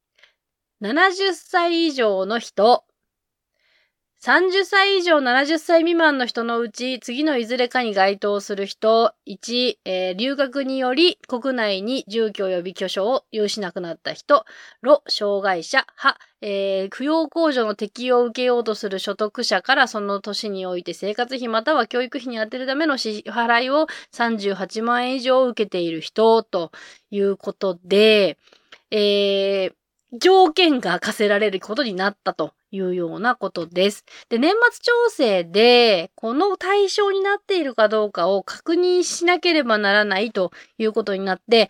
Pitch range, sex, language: 200-300 Hz, female, Japanese